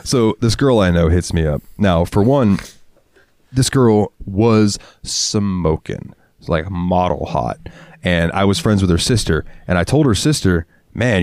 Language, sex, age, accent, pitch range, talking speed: English, male, 30-49, American, 85-105 Hz, 165 wpm